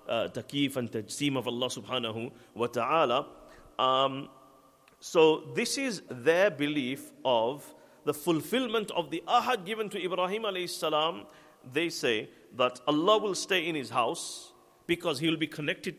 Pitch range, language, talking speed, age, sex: 150-205 Hz, English, 145 wpm, 50-69, male